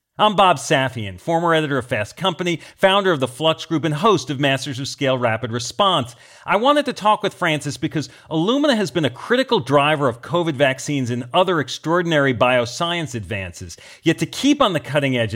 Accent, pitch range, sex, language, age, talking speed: American, 130-185 Hz, male, English, 40-59, 190 wpm